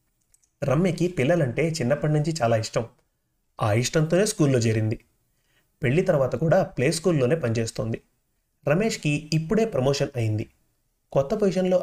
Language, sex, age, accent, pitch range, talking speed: Telugu, male, 30-49, native, 120-165 Hz, 105 wpm